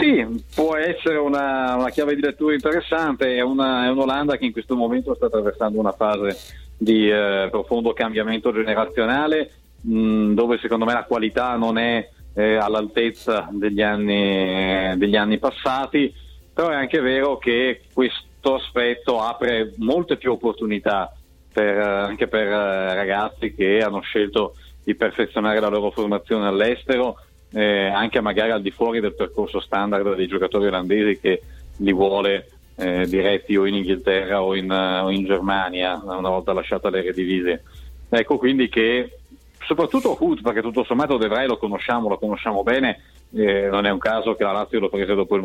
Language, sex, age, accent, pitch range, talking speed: Italian, male, 40-59, native, 95-120 Hz, 155 wpm